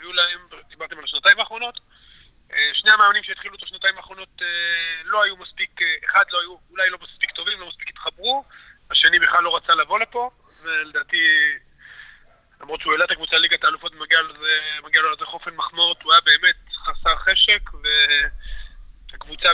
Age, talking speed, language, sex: 20-39, 155 wpm, Hebrew, male